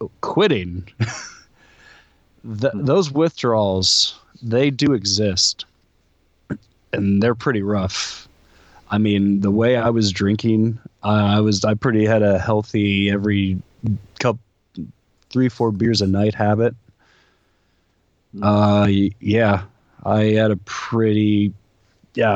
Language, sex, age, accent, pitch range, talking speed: English, male, 20-39, American, 95-110 Hz, 105 wpm